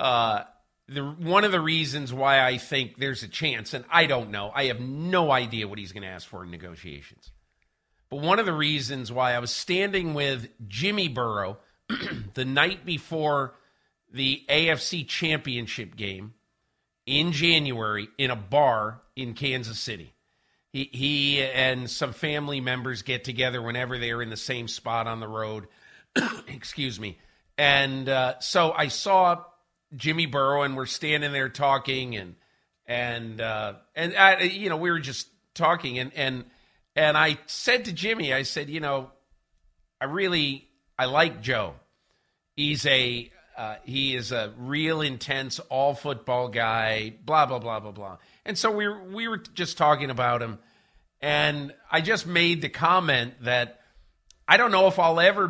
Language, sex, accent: English, male, American